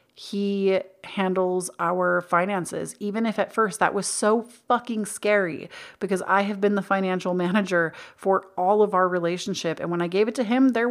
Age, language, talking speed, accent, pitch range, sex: 30-49, English, 180 wpm, American, 185-240 Hz, female